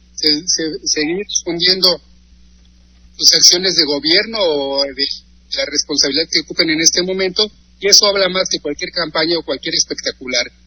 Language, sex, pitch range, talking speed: Spanish, male, 145-180 Hz, 150 wpm